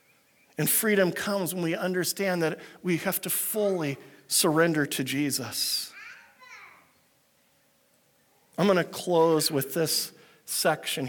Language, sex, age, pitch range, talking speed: English, male, 50-69, 170-220 Hz, 115 wpm